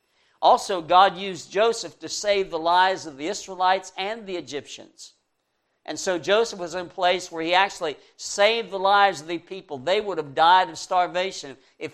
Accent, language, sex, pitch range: American, English, male, 160-195 Hz